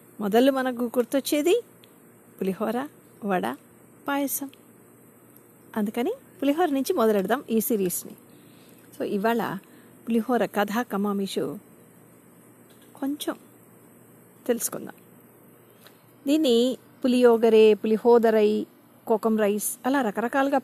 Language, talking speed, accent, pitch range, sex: Telugu, 80 wpm, native, 205-275 Hz, female